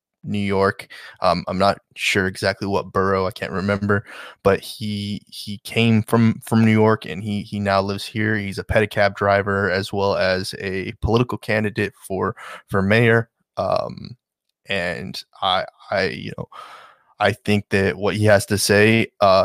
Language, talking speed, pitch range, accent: English, 165 wpm, 95-110 Hz, American